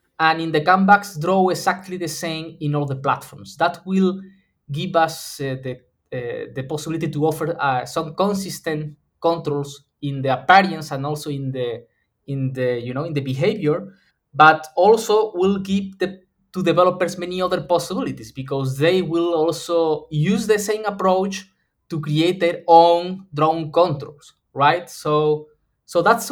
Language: English